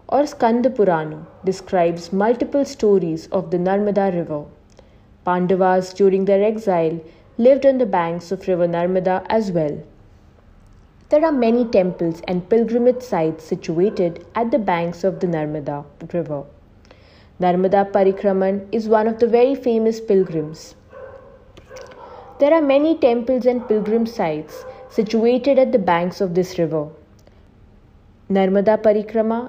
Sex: female